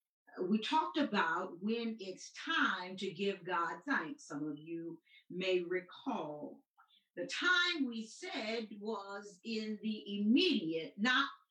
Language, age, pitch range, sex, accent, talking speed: English, 50-69, 225-285 Hz, female, American, 125 wpm